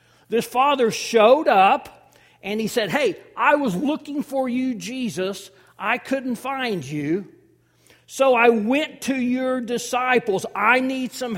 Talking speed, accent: 140 wpm, American